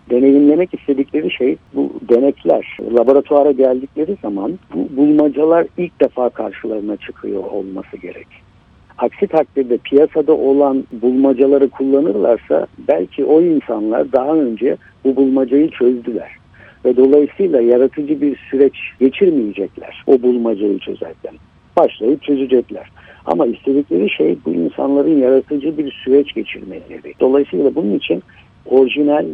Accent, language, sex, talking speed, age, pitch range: native, Turkish, male, 110 wpm, 60-79, 120-145 Hz